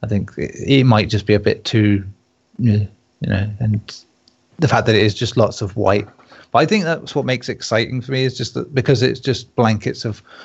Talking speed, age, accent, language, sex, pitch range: 220 wpm, 30-49, British, English, male, 105-125 Hz